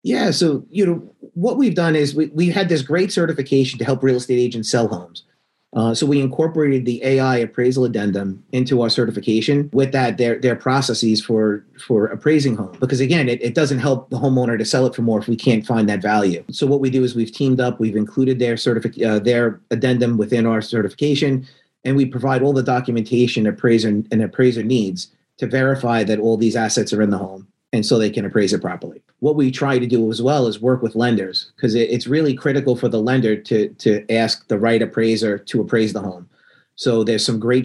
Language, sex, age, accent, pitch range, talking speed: English, male, 30-49, American, 110-130 Hz, 220 wpm